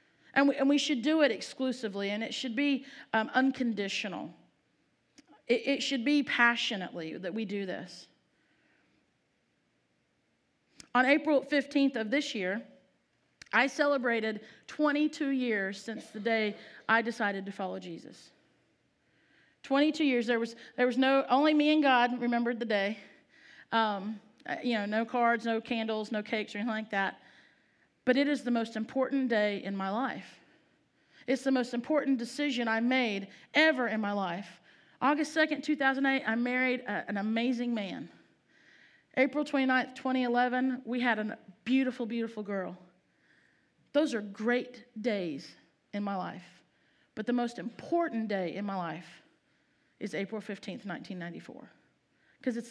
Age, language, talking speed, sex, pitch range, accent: 40-59, English, 145 wpm, female, 215-270 Hz, American